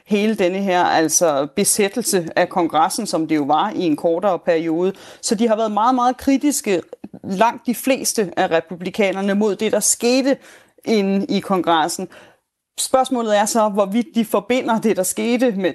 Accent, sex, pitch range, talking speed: native, female, 185-230 Hz, 165 wpm